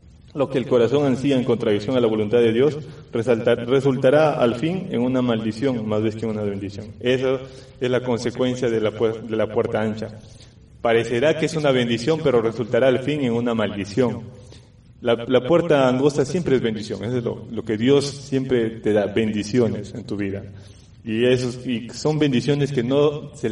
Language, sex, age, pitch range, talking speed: Spanish, male, 30-49, 115-130 Hz, 190 wpm